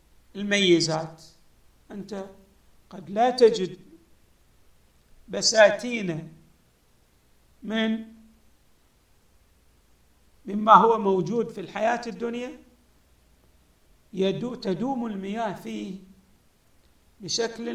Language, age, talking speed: Arabic, 50-69, 55 wpm